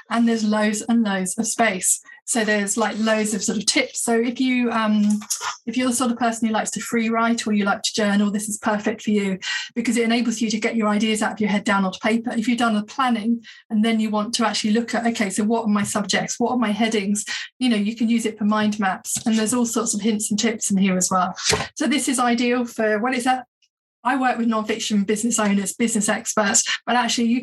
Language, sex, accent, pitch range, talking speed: English, female, British, 215-245 Hz, 260 wpm